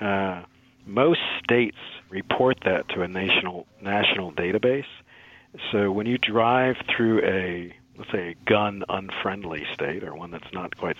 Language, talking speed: English, 145 wpm